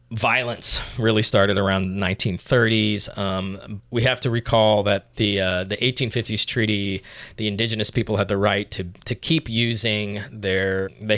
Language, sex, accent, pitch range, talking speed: English, male, American, 100-120 Hz, 155 wpm